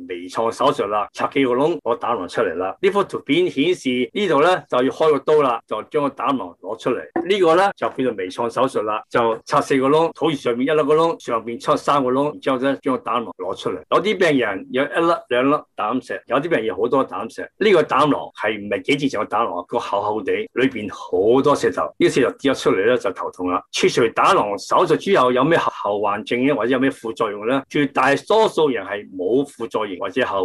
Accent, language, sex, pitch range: native, Chinese, male, 125-180 Hz